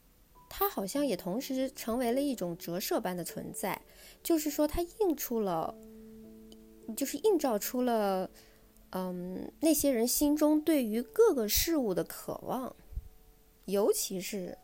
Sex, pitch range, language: female, 175-265 Hz, Chinese